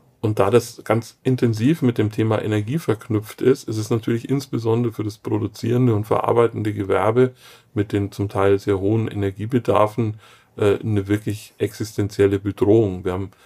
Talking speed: 150 wpm